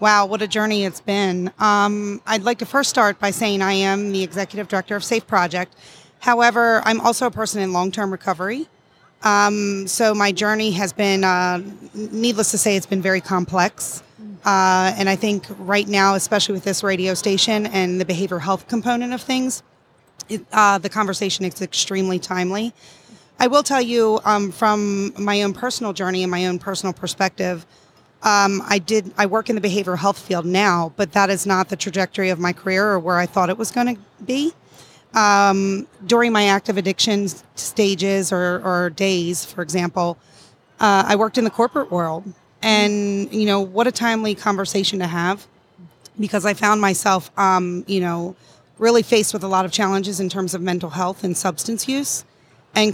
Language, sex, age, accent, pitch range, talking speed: English, female, 30-49, American, 185-215 Hz, 185 wpm